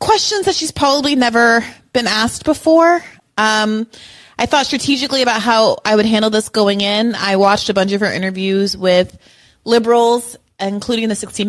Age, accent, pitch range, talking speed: 30-49, American, 185-245 Hz, 165 wpm